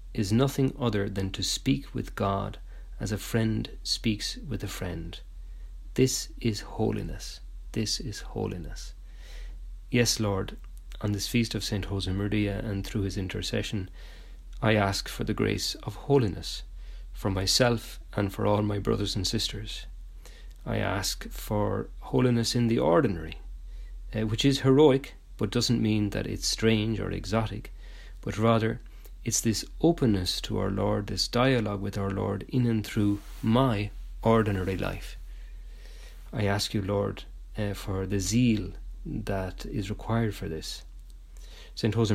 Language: English